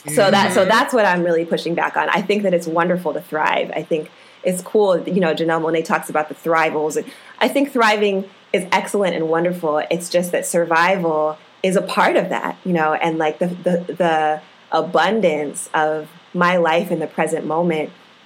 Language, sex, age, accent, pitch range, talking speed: English, female, 20-39, American, 160-195 Hz, 200 wpm